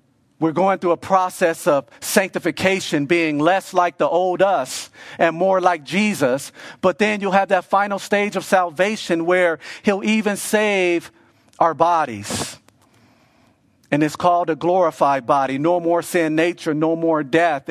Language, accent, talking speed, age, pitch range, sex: English, American, 155 wpm, 40-59, 155-190 Hz, male